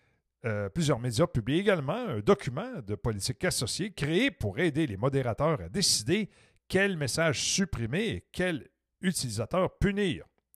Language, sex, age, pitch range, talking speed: French, male, 50-69, 120-175 Hz, 135 wpm